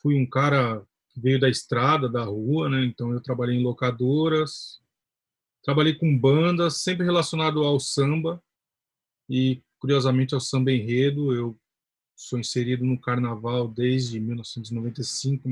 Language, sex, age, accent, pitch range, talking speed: Portuguese, male, 20-39, Brazilian, 120-140 Hz, 130 wpm